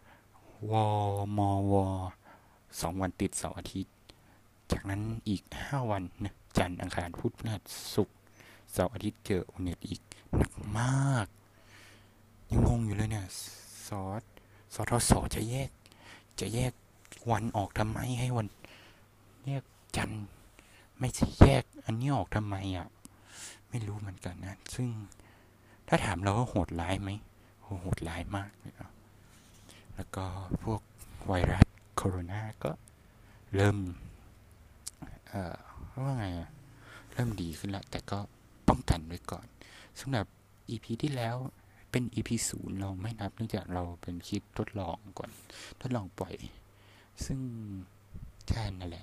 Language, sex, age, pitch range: Thai, male, 60-79, 95-110 Hz